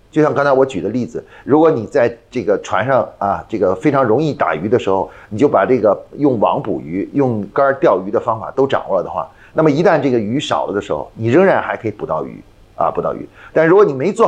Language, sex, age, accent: Chinese, male, 30-49, native